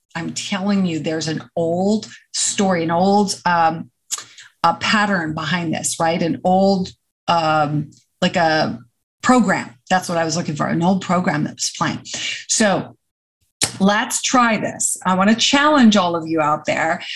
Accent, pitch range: American, 175-220 Hz